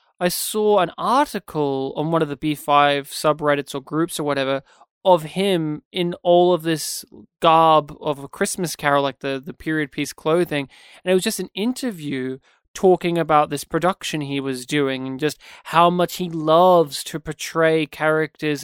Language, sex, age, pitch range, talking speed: English, male, 20-39, 155-195 Hz, 170 wpm